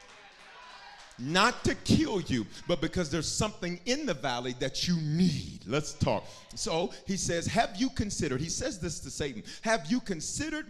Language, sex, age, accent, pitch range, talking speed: English, male, 40-59, American, 160-260 Hz, 170 wpm